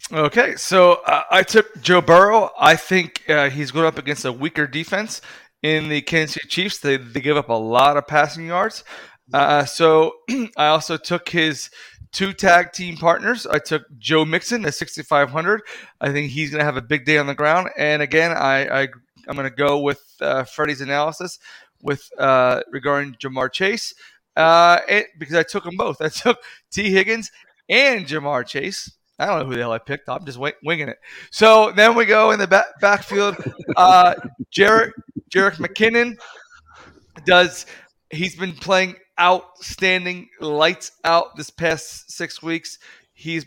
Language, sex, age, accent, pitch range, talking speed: English, male, 30-49, American, 150-180 Hz, 175 wpm